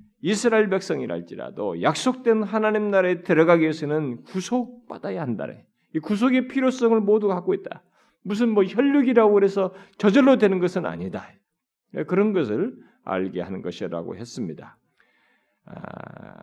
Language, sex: Korean, male